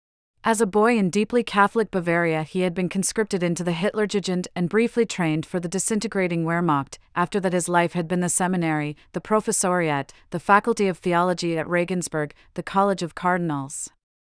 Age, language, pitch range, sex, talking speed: 30-49, English, 165-205 Hz, female, 170 wpm